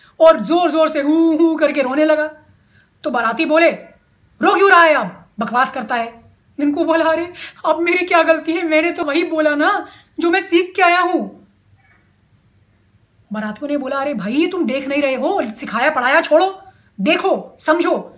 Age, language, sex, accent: 30-49, Hindi, female, native